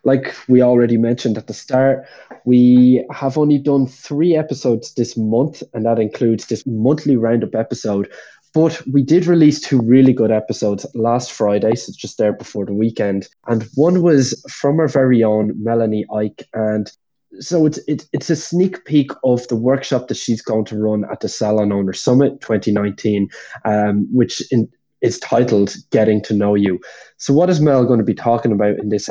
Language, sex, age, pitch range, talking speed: English, male, 20-39, 110-140 Hz, 180 wpm